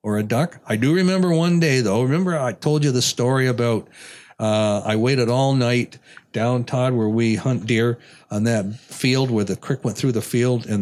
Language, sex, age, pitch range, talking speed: English, male, 60-79, 110-140 Hz, 210 wpm